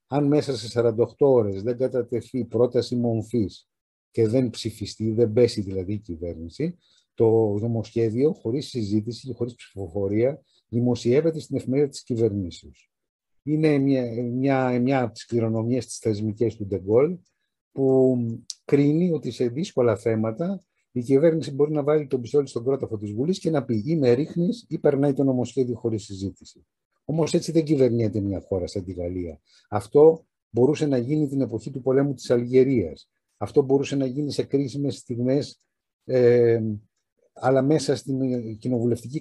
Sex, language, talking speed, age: male, Greek, 155 wpm, 50-69